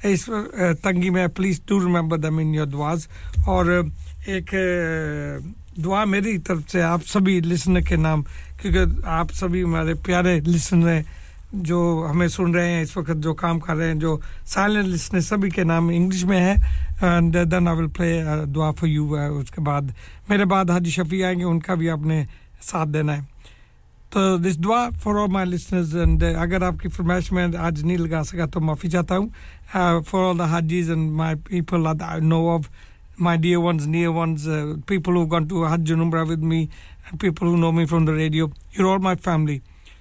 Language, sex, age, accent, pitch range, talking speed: English, male, 50-69, Indian, 160-185 Hz, 175 wpm